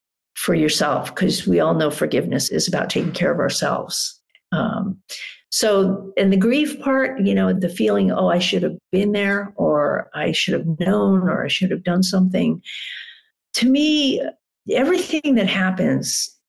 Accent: American